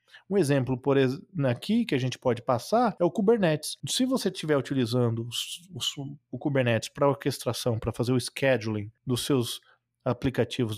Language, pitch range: Portuguese, 125-170 Hz